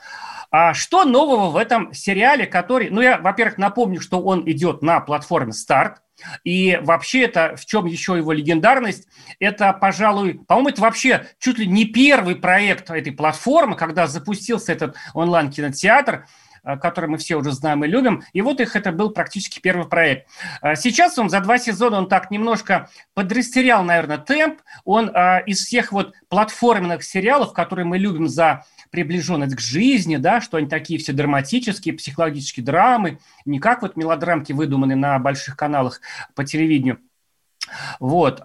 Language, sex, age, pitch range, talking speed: Russian, male, 40-59, 160-225 Hz, 155 wpm